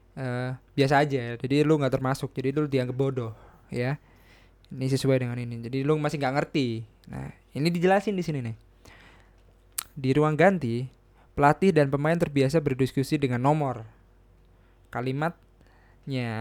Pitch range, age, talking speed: 120-145 Hz, 20-39, 140 wpm